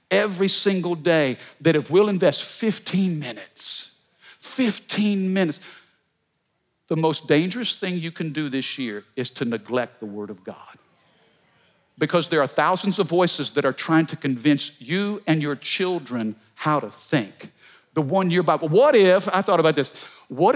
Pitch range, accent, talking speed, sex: 155-210 Hz, American, 160 wpm, male